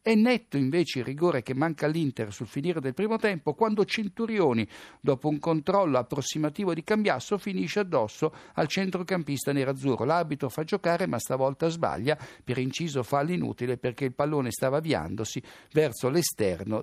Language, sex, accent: Italian, male, native